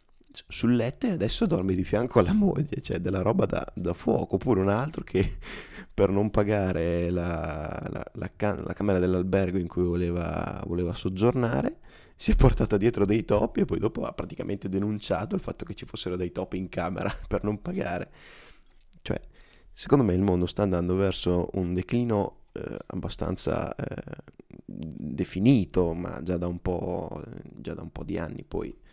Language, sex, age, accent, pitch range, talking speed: Italian, male, 20-39, native, 90-100 Hz, 160 wpm